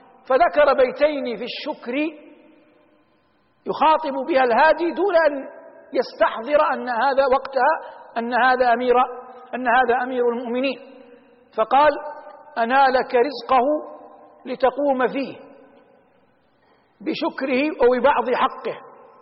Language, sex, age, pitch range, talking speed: Arabic, male, 60-79, 235-280 Hz, 90 wpm